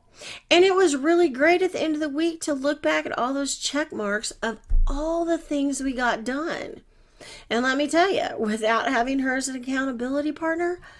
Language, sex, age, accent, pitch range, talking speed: English, female, 40-59, American, 195-295 Hz, 205 wpm